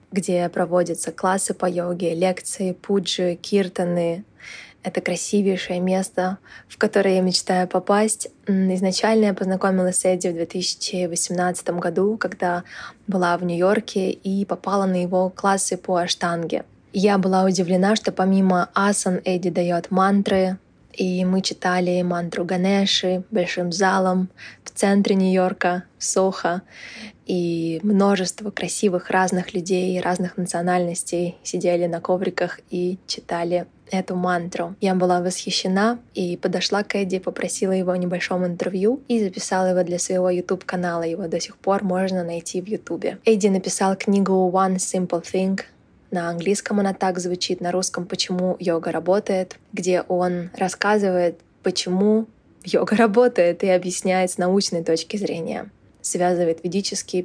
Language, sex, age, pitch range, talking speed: Russian, female, 20-39, 180-195 Hz, 135 wpm